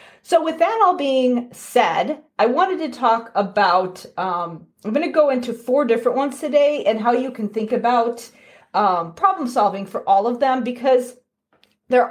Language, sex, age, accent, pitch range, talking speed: English, female, 30-49, American, 200-265 Hz, 180 wpm